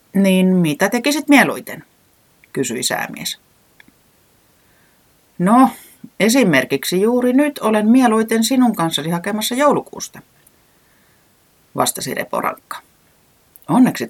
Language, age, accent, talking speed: Finnish, 30-49, native, 80 wpm